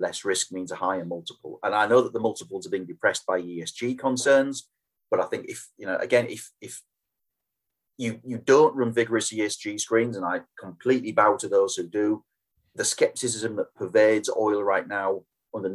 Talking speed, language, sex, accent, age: 190 wpm, English, male, British, 30-49